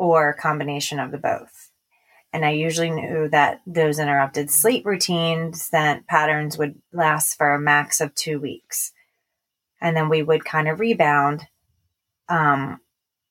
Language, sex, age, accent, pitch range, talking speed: English, female, 30-49, American, 145-175 Hz, 150 wpm